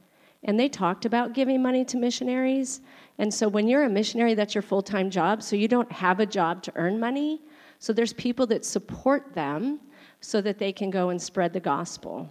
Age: 40-59